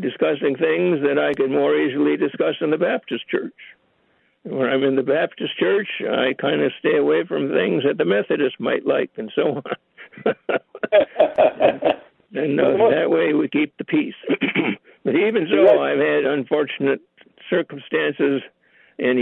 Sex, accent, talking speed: male, American, 155 wpm